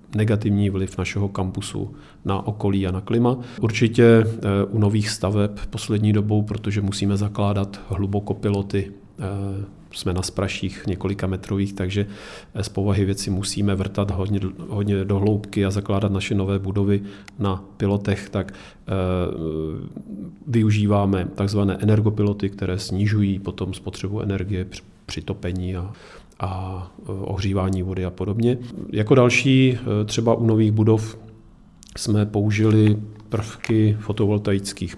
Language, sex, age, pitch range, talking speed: Czech, male, 40-59, 95-110 Hz, 115 wpm